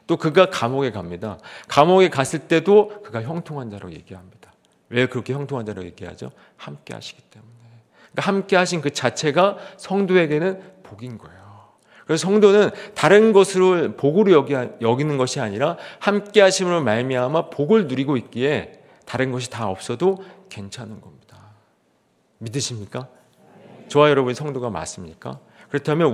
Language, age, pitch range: Korean, 40-59, 115-175 Hz